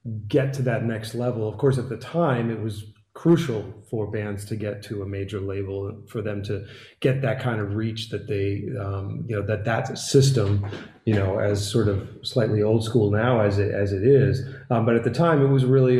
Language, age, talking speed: English, 30-49, 225 wpm